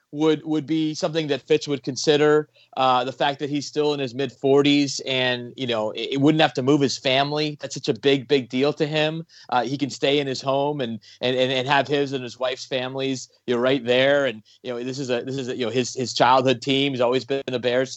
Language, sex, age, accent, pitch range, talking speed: English, male, 30-49, American, 125-145 Hz, 255 wpm